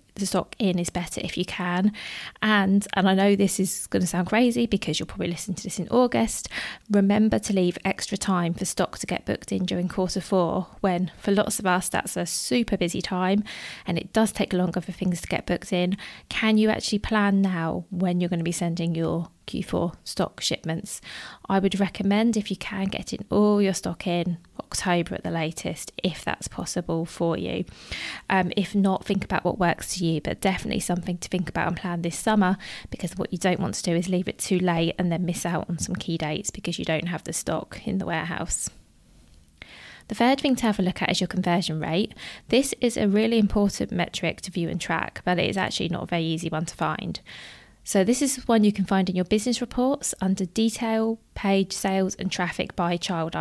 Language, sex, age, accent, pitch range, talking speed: English, female, 20-39, British, 175-205 Hz, 220 wpm